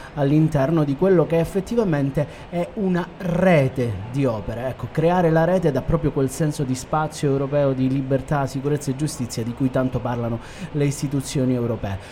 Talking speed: 165 wpm